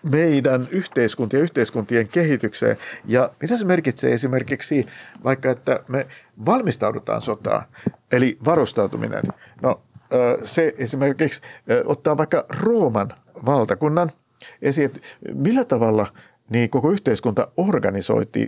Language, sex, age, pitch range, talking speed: Finnish, male, 50-69, 115-160 Hz, 105 wpm